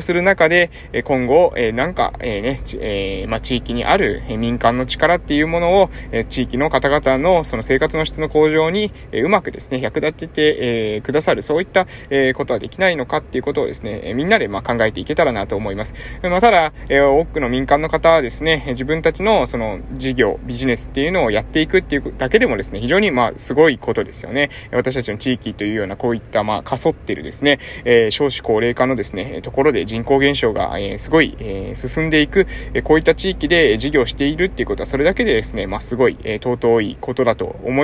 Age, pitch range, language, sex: 20-39, 120-160 Hz, Japanese, male